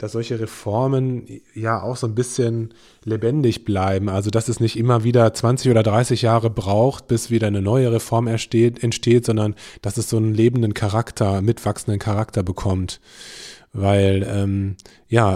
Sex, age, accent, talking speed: male, 20-39, German, 160 wpm